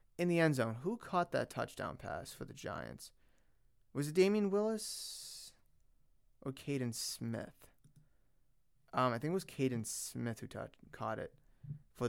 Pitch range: 120-160 Hz